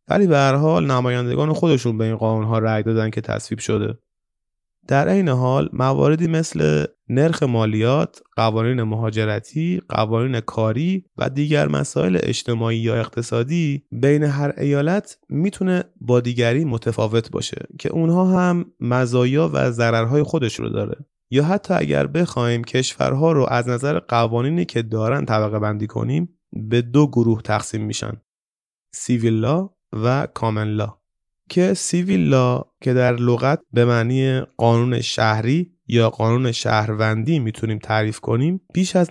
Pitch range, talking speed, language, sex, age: 110-145 Hz, 135 wpm, Persian, male, 30-49